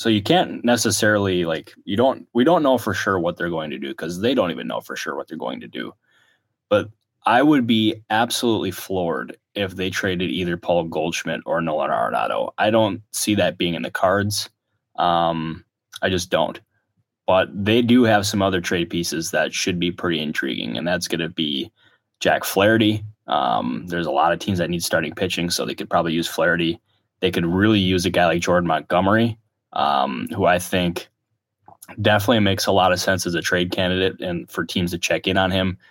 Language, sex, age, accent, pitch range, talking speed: English, male, 10-29, American, 85-105 Hz, 205 wpm